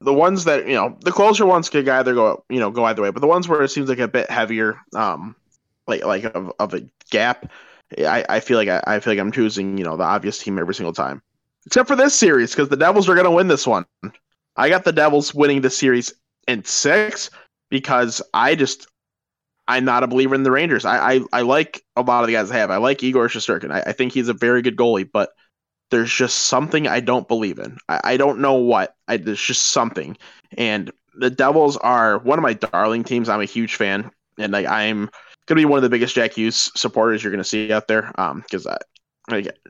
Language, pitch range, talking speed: English, 115-140 Hz, 235 wpm